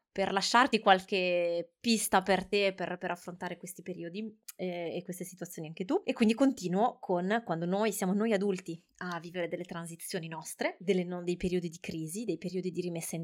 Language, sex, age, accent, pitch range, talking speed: Italian, female, 20-39, native, 175-210 Hz, 185 wpm